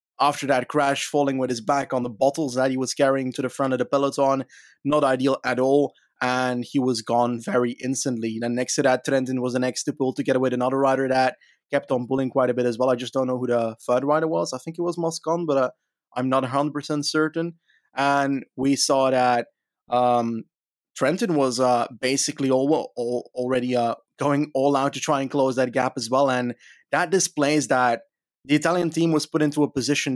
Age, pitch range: 20-39, 130-155 Hz